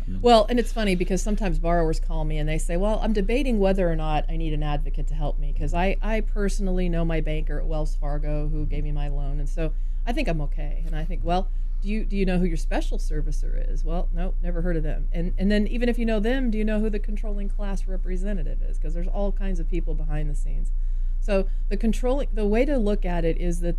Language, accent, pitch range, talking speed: English, American, 150-185 Hz, 260 wpm